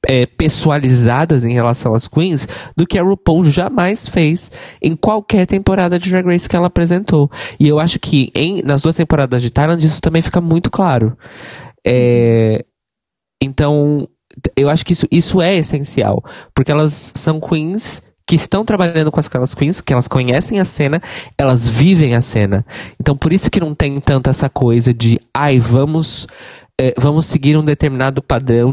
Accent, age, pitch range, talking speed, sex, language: Brazilian, 20-39, 120-165 Hz, 165 wpm, male, Portuguese